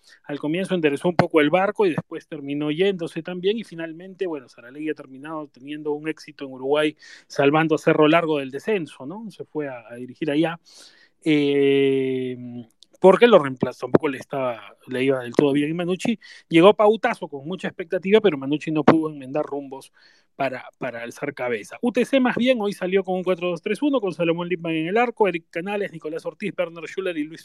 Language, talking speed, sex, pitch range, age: Spanish, 190 wpm, male, 155-200 Hz, 30-49